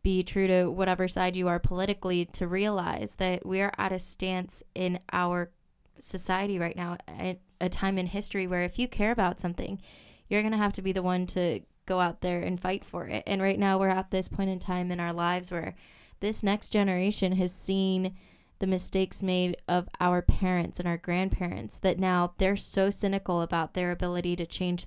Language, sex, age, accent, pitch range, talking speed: English, female, 20-39, American, 175-195 Hz, 205 wpm